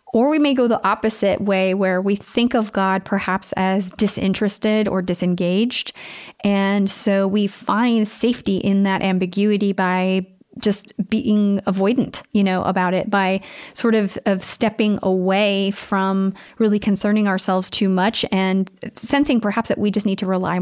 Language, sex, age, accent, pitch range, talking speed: English, female, 30-49, American, 190-215 Hz, 155 wpm